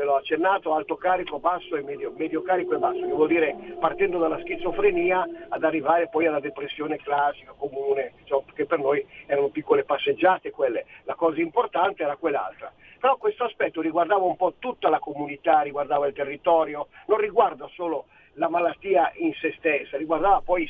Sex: male